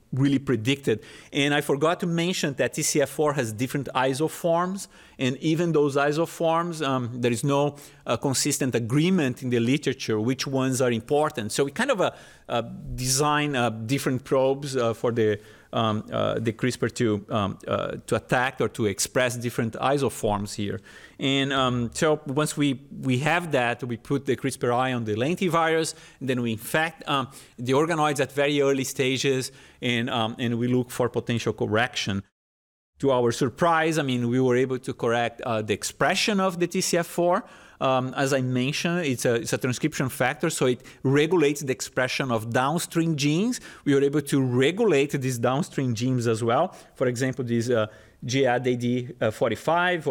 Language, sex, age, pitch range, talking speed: English, male, 40-59, 120-150 Hz, 165 wpm